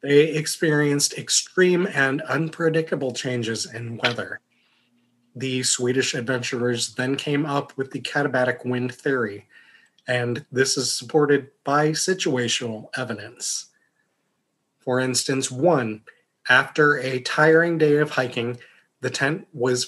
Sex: male